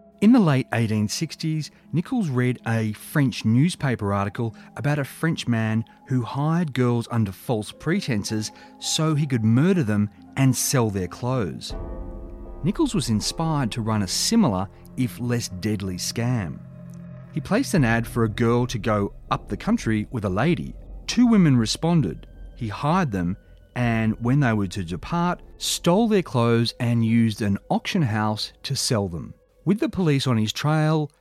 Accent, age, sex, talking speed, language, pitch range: Australian, 30-49, male, 160 wpm, English, 105-145 Hz